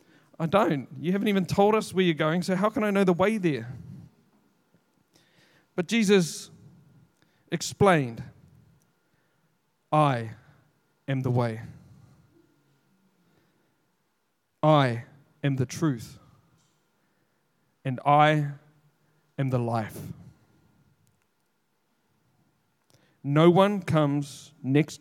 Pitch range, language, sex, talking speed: 135-170 Hz, English, male, 90 wpm